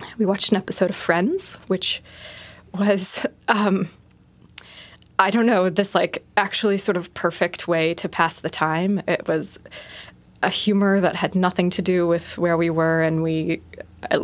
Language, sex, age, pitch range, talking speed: English, female, 20-39, 160-190 Hz, 165 wpm